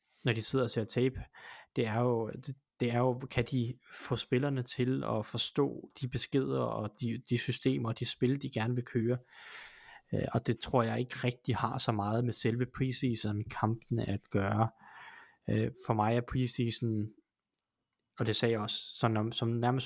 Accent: native